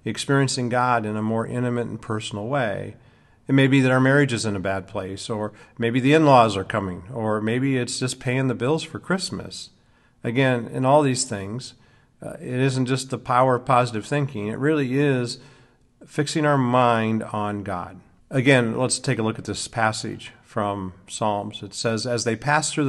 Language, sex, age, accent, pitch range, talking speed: English, male, 50-69, American, 110-130 Hz, 190 wpm